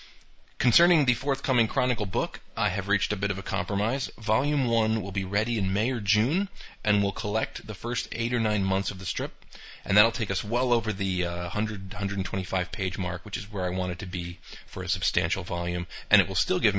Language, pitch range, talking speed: English, 95-110 Hz, 225 wpm